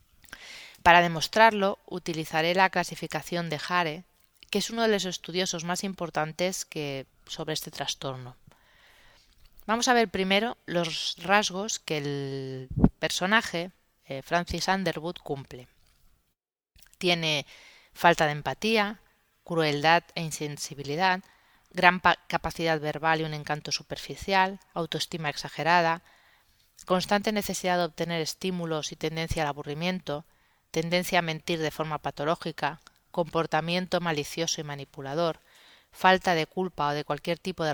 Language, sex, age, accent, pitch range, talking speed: Spanish, female, 30-49, Spanish, 150-180 Hz, 120 wpm